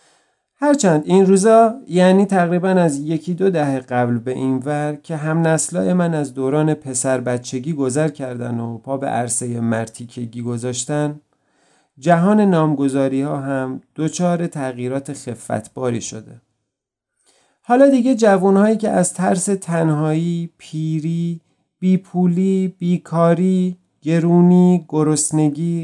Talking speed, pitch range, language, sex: 115 wpm, 135-180 Hz, Persian, male